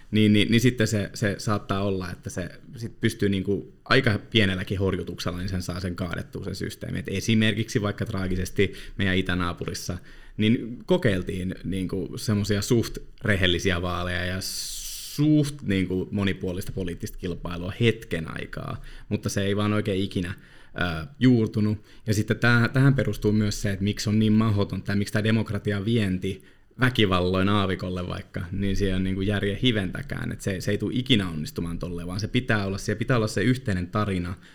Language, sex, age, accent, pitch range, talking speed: Finnish, male, 30-49, native, 95-115 Hz, 165 wpm